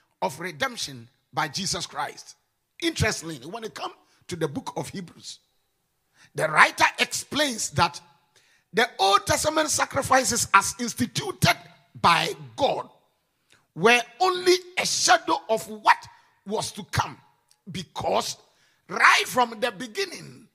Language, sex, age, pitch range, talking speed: English, male, 50-69, 225-340 Hz, 115 wpm